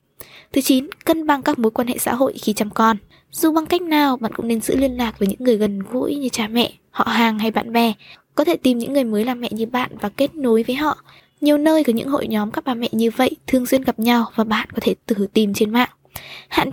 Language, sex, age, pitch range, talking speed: Vietnamese, female, 10-29, 220-275 Hz, 270 wpm